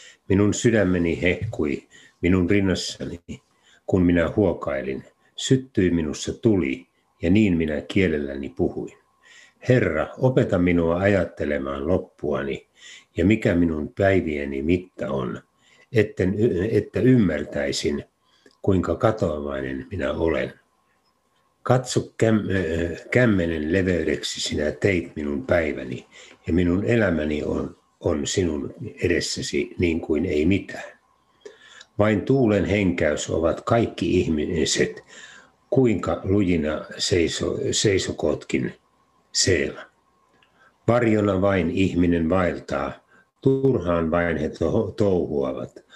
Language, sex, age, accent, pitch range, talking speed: Finnish, male, 60-79, native, 80-110 Hz, 90 wpm